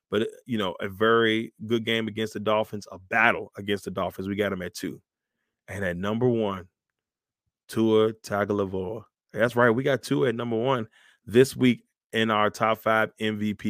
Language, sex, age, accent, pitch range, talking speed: English, male, 20-39, American, 105-120 Hz, 180 wpm